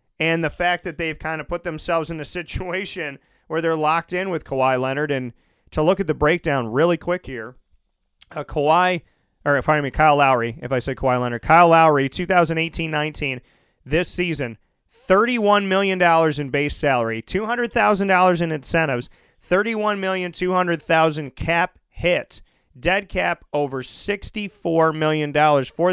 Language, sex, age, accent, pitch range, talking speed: English, male, 30-49, American, 145-185 Hz, 145 wpm